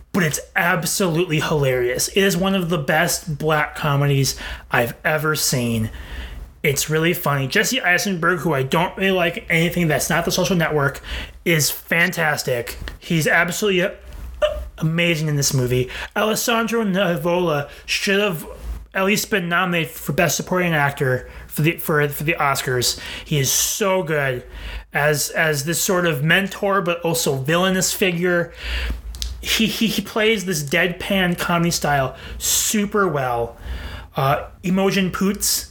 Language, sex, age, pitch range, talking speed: English, male, 30-49, 155-195 Hz, 140 wpm